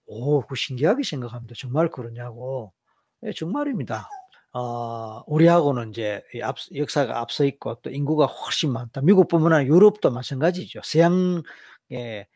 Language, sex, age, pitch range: Korean, male, 40-59, 120-170 Hz